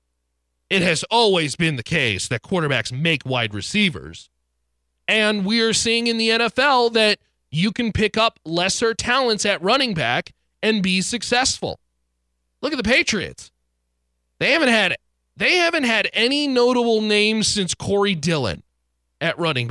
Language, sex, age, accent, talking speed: English, male, 30-49, American, 150 wpm